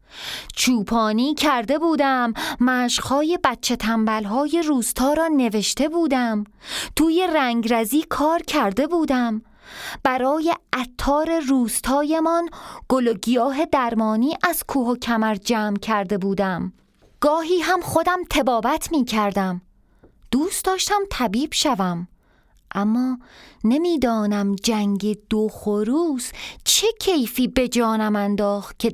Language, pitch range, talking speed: Persian, 200-275 Hz, 100 wpm